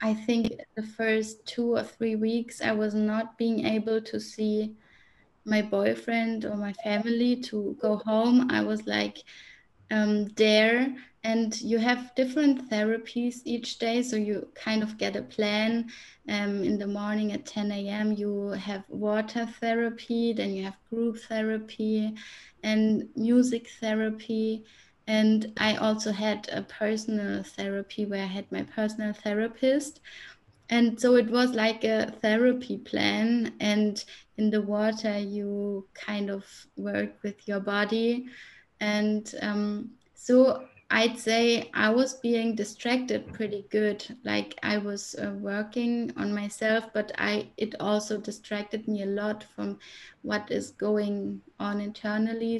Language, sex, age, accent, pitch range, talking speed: English, female, 20-39, German, 210-230 Hz, 145 wpm